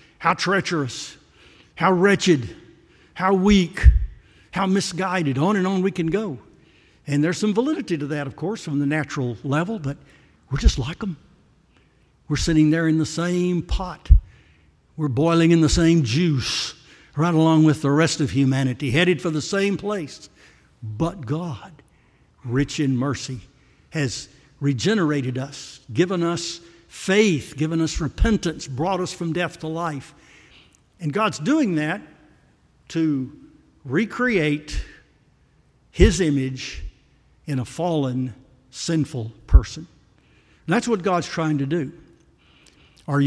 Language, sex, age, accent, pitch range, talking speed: English, male, 60-79, American, 140-170 Hz, 135 wpm